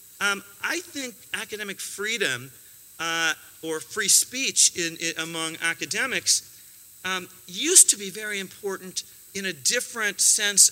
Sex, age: male, 40-59